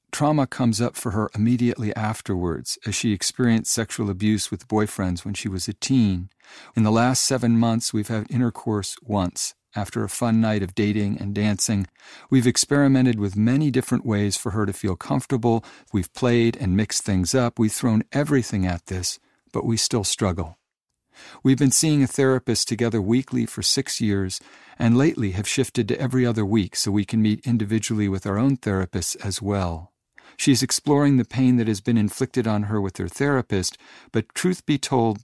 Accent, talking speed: American, 185 wpm